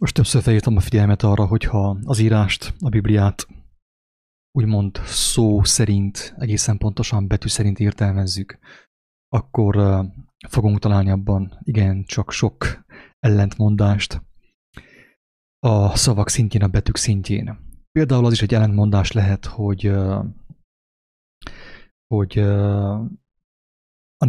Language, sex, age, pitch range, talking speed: English, male, 30-49, 100-115 Hz, 105 wpm